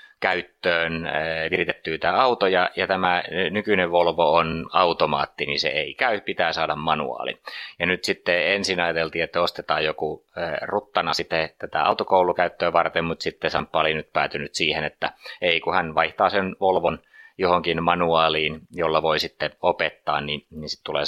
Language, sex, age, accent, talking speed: Finnish, male, 30-49, native, 150 wpm